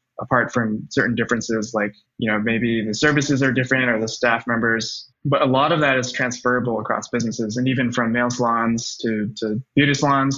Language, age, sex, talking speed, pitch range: English, 20-39, male, 195 wpm, 115-135 Hz